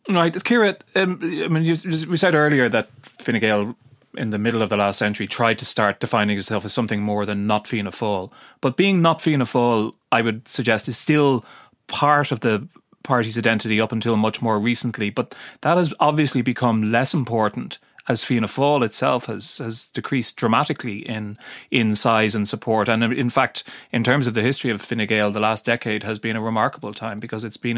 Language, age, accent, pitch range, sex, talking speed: English, 30-49, Irish, 105-130 Hz, male, 205 wpm